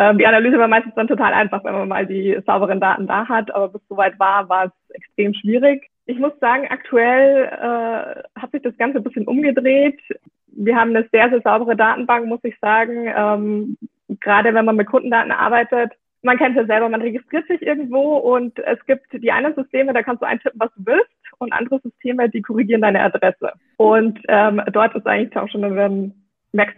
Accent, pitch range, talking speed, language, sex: German, 200-245 Hz, 200 wpm, German, female